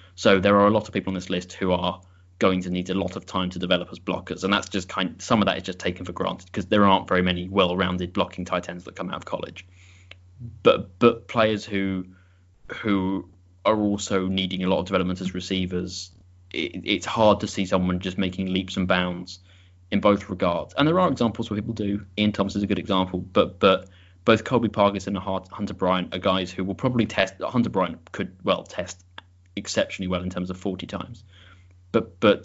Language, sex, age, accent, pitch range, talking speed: English, male, 20-39, British, 90-100 Hz, 220 wpm